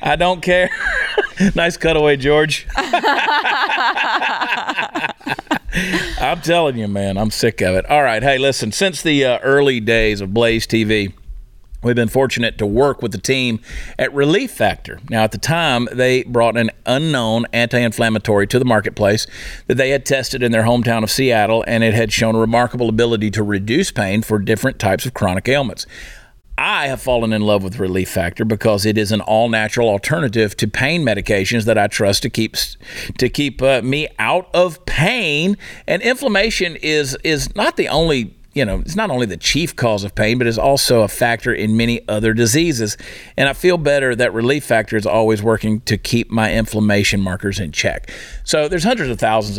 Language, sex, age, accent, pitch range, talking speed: English, male, 40-59, American, 110-135 Hz, 185 wpm